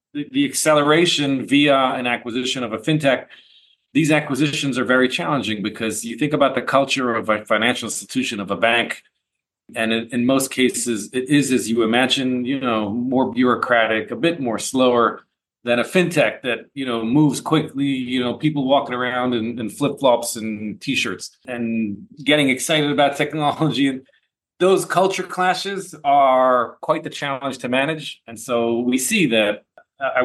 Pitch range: 120-145 Hz